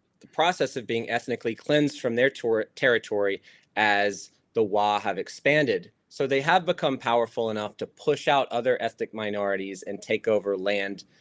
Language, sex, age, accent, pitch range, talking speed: English, male, 30-49, American, 100-130 Hz, 165 wpm